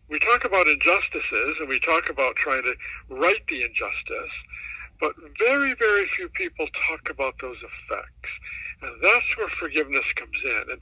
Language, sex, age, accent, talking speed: English, male, 60-79, American, 160 wpm